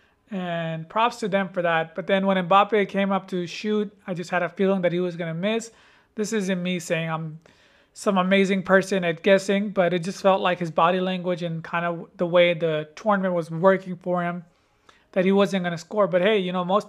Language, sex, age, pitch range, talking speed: English, male, 30-49, 180-205 Hz, 230 wpm